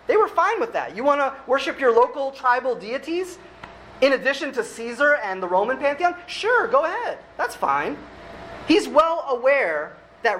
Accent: American